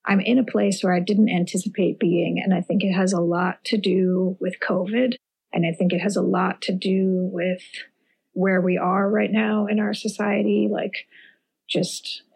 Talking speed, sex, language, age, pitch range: 195 wpm, female, English, 30-49, 185-220 Hz